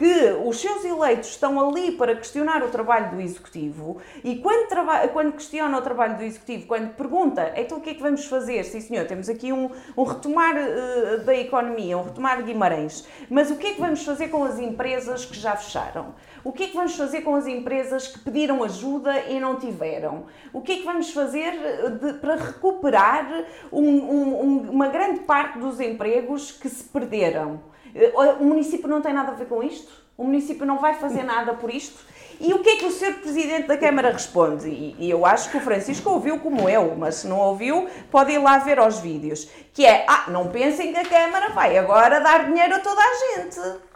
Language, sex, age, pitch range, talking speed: Portuguese, female, 30-49, 235-335 Hz, 210 wpm